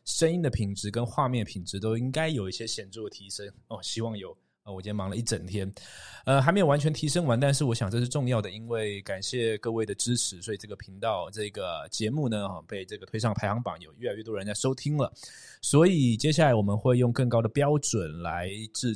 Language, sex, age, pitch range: Chinese, male, 20-39, 100-135 Hz